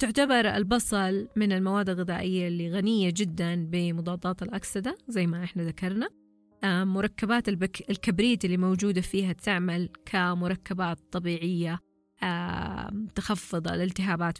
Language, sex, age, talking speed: Arabic, female, 20-39, 100 wpm